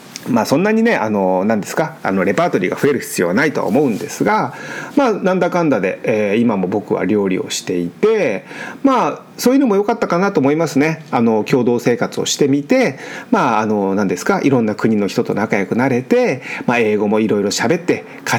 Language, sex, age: Japanese, male, 40-59